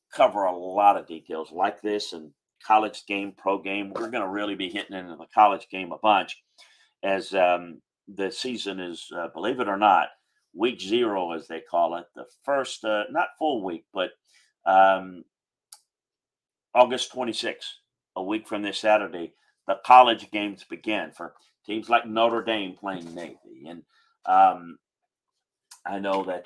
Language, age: English, 50-69